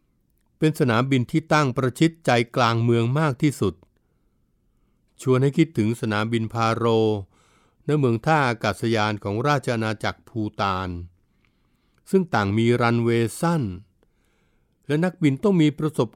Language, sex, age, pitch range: Thai, male, 60-79, 105-145 Hz